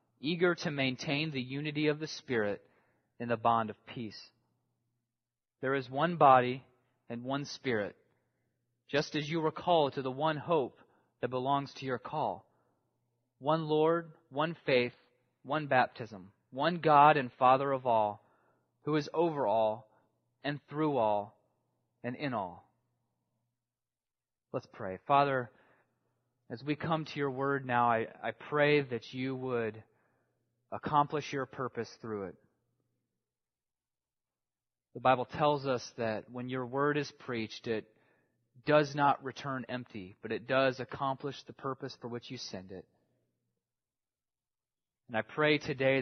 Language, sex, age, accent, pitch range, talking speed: English, male, 30-49, American, 120-145 Hz, 140 wpm